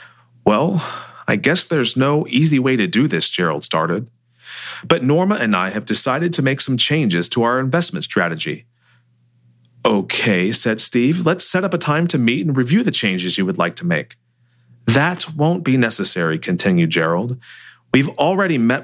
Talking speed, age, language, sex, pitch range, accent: 170 wpm, 40-59, English, male, 115-155 Hz, American